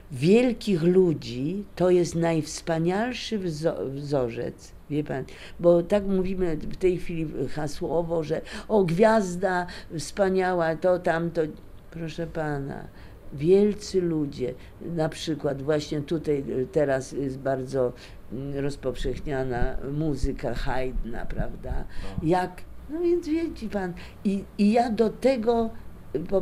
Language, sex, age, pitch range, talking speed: Polish, female, 50-69, 135-185 Hz, 105 wpm